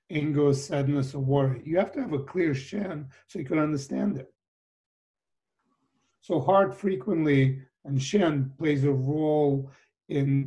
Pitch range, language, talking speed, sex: 130-155 Hz, English, 145 wpm, male